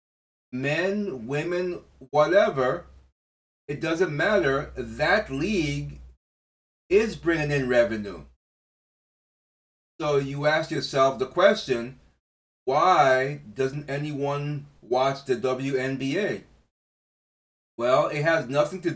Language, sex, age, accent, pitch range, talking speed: English, male, 30-49, American, 110-150 Hz, 90 wpm